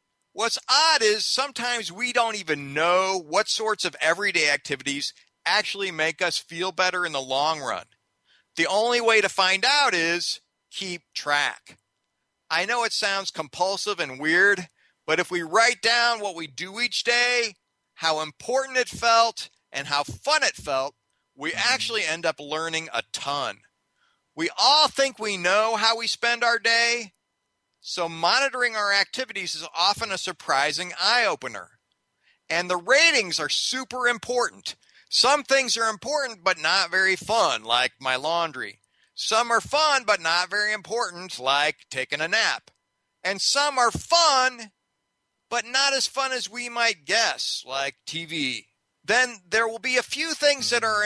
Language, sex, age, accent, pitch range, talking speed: English, male, 50-69, American, 170-245 Hz, 155 wpm